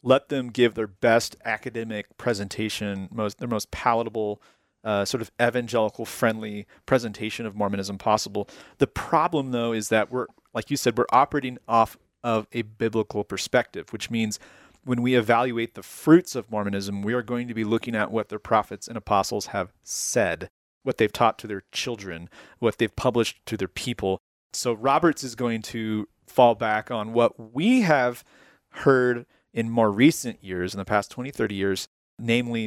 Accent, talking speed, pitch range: American, 170 wpm, 105-125 Hz